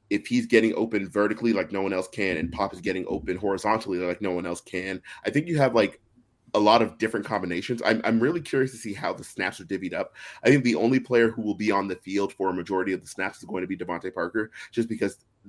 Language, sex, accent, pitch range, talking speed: English, male, American, 95-115 Hz, 265 wpm